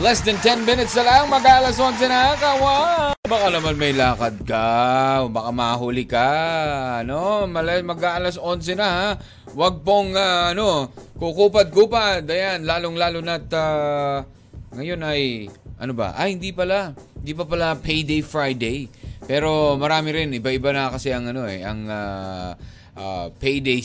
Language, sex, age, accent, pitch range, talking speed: Filipino, male, 20-39, native, 120-170 Hz, 145 wpm